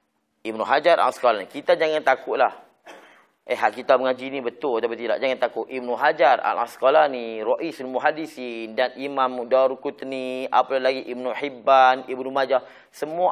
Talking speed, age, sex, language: 140 wpm, 30-49, male, Malay